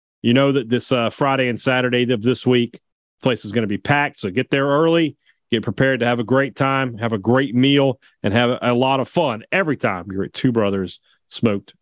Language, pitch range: English, 115-150 Hz